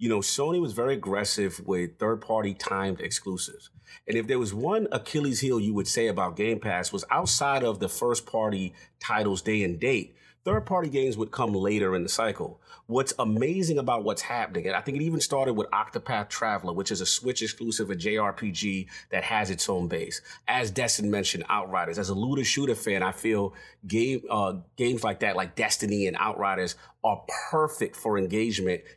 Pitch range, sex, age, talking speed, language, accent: 105-145 Hz, male, 30-49, 195 wpm, English, American